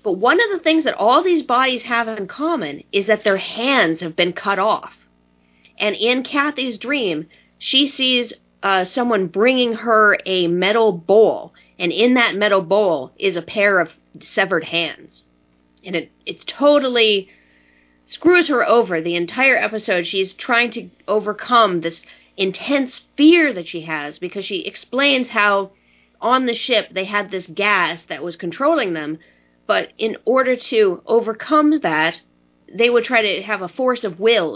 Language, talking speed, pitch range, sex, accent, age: English, 165 wpm, 170-235 Hz, female, American, 40-59